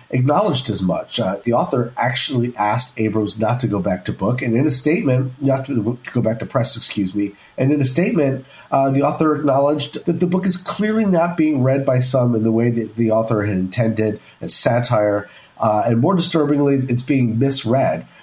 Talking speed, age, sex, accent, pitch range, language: 205 wpm, 40-59, male, American, 110-145 Hz, English